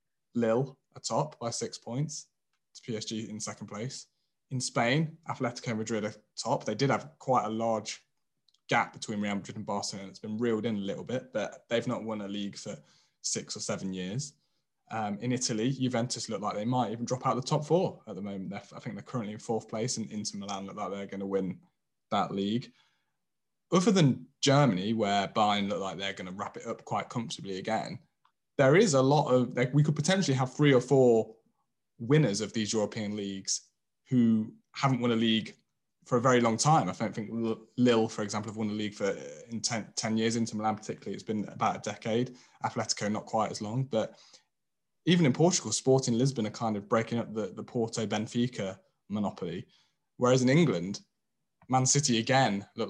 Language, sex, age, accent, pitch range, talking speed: English, male, 20-39, British, 105-125 Hz, 200 wpm